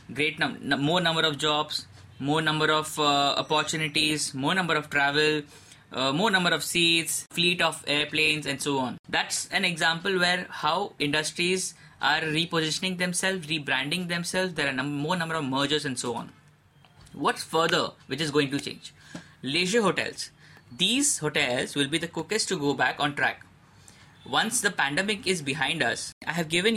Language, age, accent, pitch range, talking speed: English, 20-39, Indian, 140-170 Hz, 175 wpm